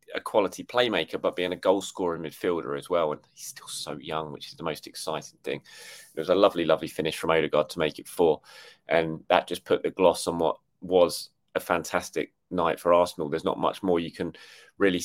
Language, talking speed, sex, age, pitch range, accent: English, 215 wpm, male, 30-49, 90-130 Hz, British